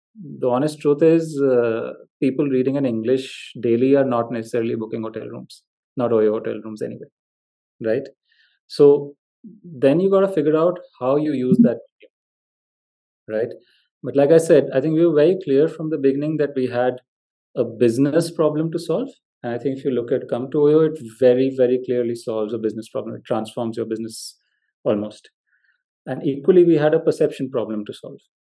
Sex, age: male, 30-49